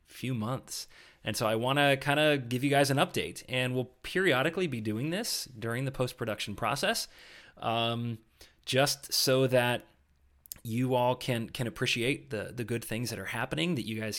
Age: 20-39